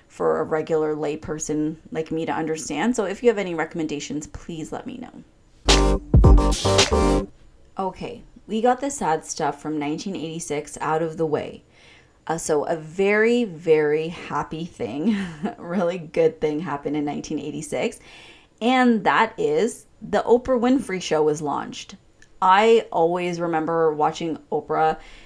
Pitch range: 155-185 Hz